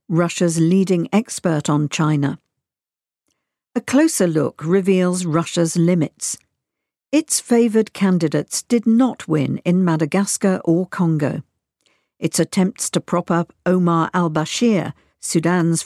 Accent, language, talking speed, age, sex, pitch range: British, English, 110 wpm, 50-69, female, 165-205 Hz